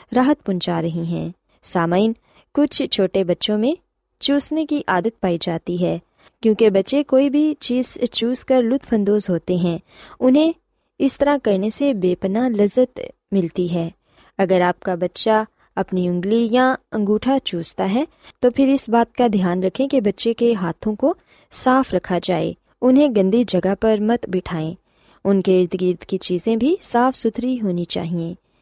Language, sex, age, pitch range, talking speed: Urdu, female, 20-39, 180-245 Hz, 160 wpm